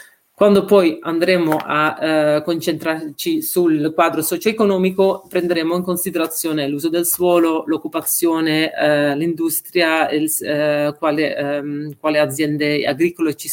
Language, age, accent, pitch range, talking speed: Italian, 40-59, native, 155-185 Hz, 115 wpm